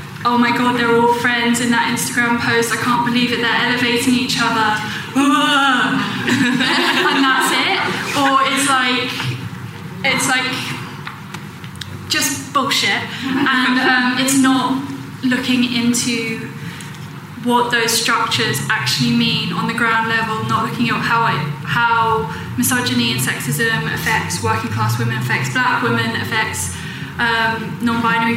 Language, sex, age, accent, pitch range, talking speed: English, female, 10-29, British, 220-245 Hz, 130 wpm